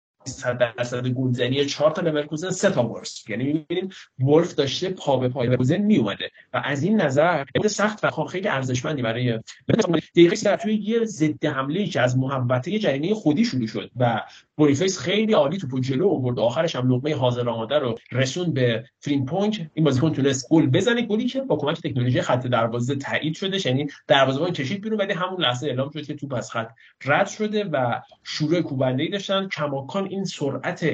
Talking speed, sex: 150 wpm, male